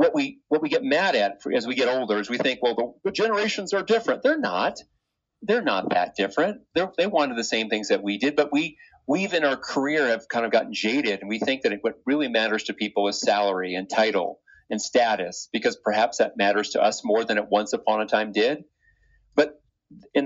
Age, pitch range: 40-59, 105-165 Hz